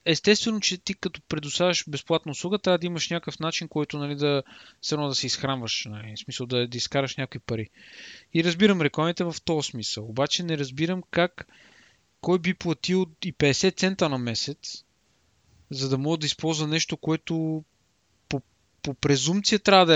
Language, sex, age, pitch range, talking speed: Bulgarian, male, 20-39, 125-170 Hz, 160 wpm